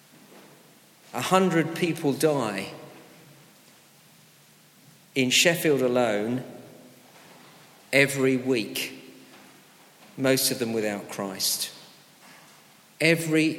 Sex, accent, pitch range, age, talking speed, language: male, British, 130-155 Hz, 50-69, 65 wpm, English